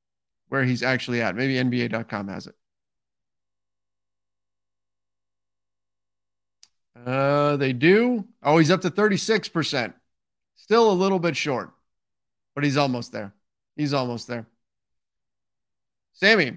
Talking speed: 105 wpm